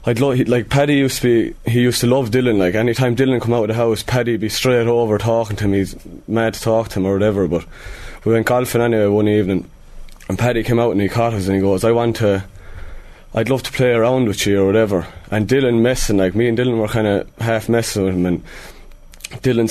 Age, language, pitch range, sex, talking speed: 20-39, English, 105-130 Hz, male, 250 wpm